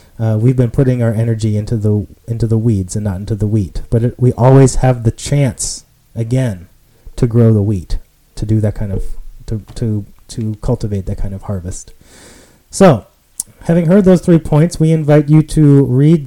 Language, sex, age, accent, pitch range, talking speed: English, male, 30-49, American, 115-145 Hz, 190 wpm